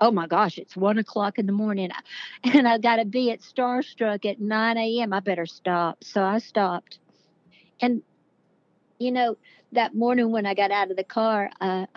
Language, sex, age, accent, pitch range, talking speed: English, female, 60-79, American, 180-220 Hz, 200 wpm